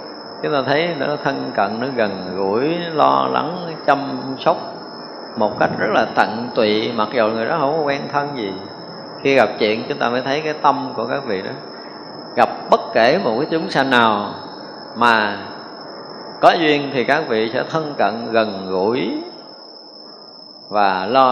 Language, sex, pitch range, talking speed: Vietnamese, male, 110-135 Hz, 175 wpm